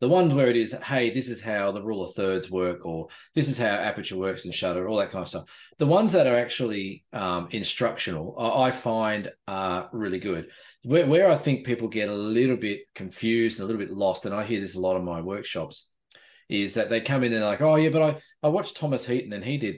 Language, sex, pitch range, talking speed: English, male, 95-130 Hz, 250 wpm